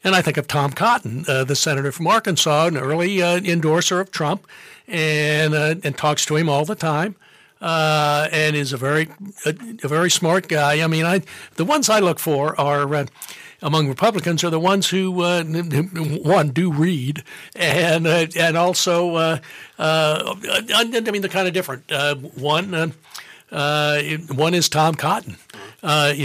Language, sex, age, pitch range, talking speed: English, male, 60-79, 150-180 Hz, 175 wpm